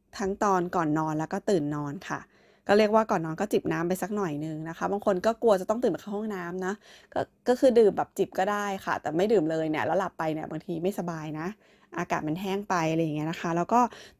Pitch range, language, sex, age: 170-210 Hz, Thai, female, 20-39